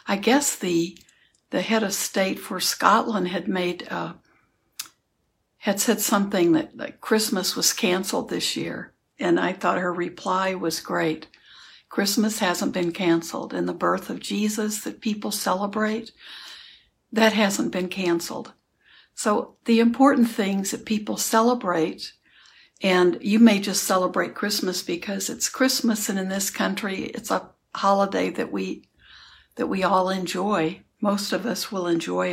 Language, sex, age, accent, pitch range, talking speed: English, female, 60-79, American, 175-215 Hz, 145 wpm